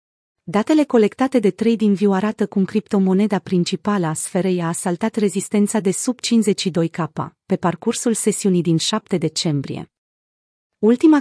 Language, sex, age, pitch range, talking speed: Romanian, female, 30-49, 180-225 Hz, 130 wpm